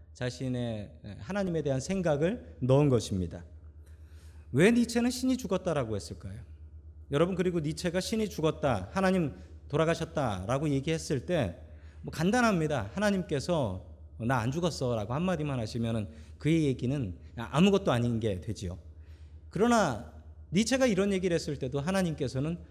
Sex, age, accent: male, 40-59, native